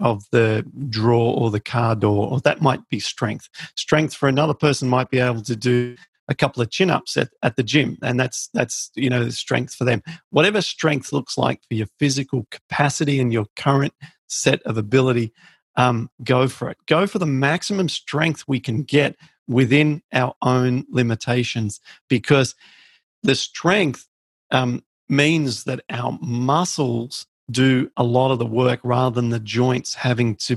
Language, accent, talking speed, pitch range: English, Australian, 175 wpm, 120-145 Hz